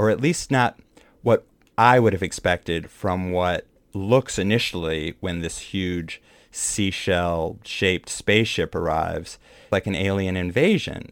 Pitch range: 90-110 Hz